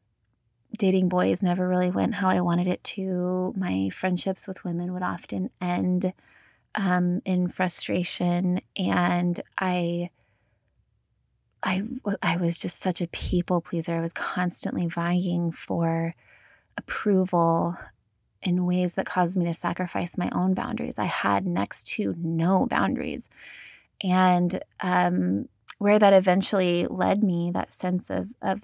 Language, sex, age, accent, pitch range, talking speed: English, female, 20-39, American, 165-190 Hz, 130 wpm